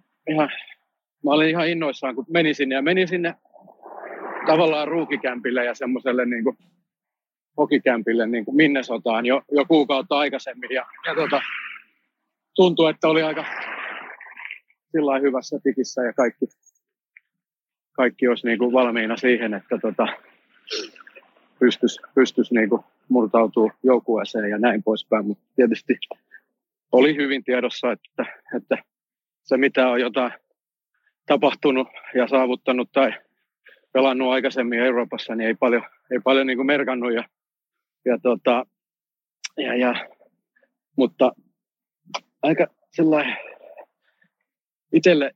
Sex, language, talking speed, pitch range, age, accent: male, Finnish, 110 wpm, 120-145 Hz, 40-59, native